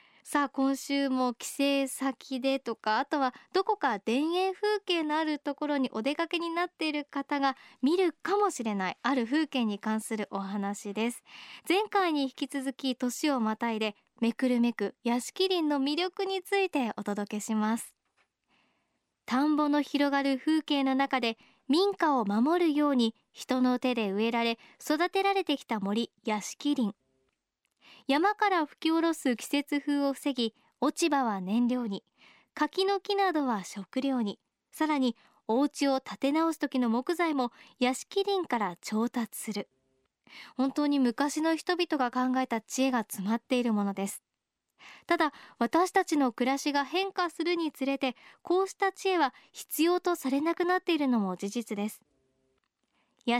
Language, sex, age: Japanese, male, 20-39